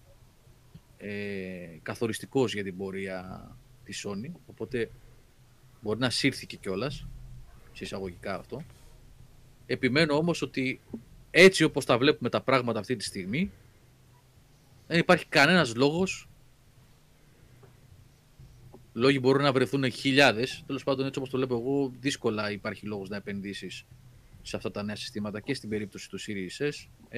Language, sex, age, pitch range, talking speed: Greek, male, 30-49, 110-135 Hz, 130 wpm